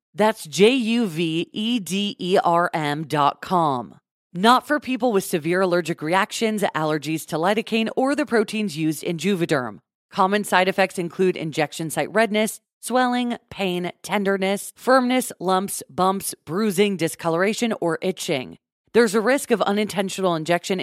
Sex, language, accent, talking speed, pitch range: female, English, American, 120 wpm, 180-235 Hz